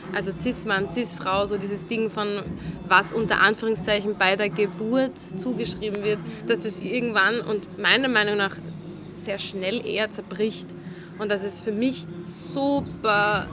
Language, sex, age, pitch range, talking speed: German, female, 20-39, 190-220 Hz, 140 wpm